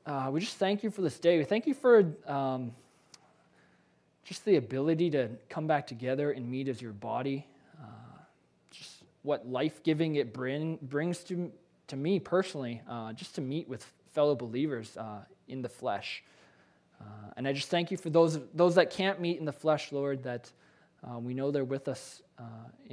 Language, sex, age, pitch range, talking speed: English, male, 20-39, 125-175 Hz, 185 wpm